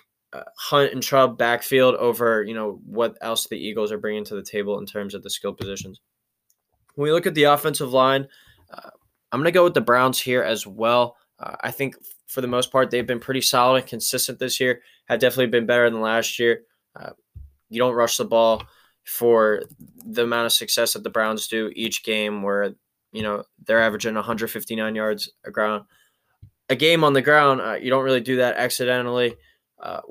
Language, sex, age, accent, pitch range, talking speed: English, male, 10-29, American, 110-125 Hz, 200 wpm